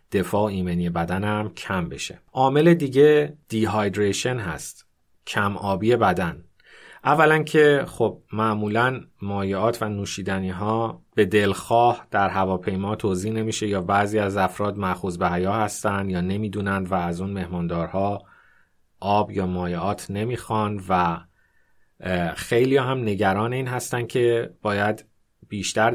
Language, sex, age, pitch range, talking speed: Persian, male, 30-49, 95-110 Hz, 125 wpm